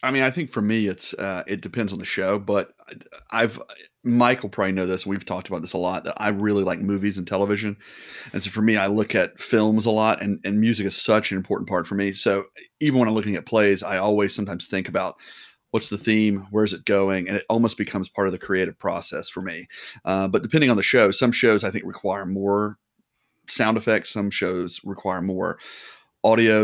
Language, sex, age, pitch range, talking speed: English, male, 30-49, 95-110 Hz, 225 wpm